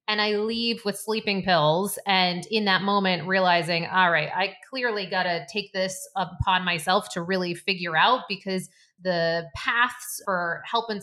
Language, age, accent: English, 30-49, American